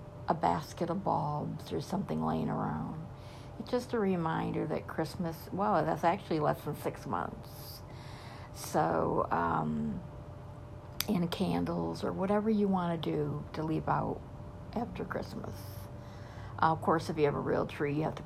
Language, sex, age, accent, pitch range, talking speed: English, female, 60-79, American, 120-205 Hz, 160 wpm